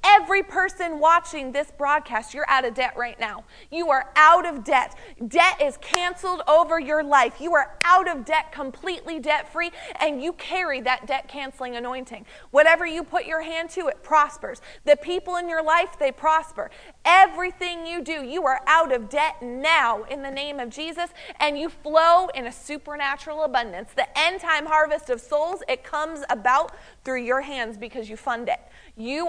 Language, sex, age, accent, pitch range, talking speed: English, female, 30-49, American, 255-320 Hz, 180 wpm